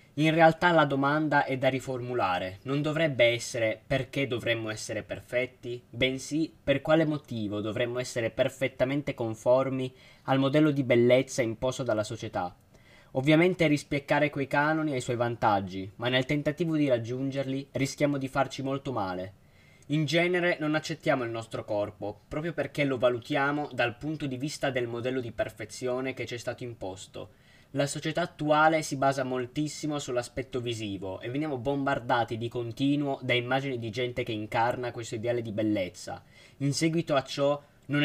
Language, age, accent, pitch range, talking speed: Italian, 20-39, native, 120-145 Hz, 155 wpm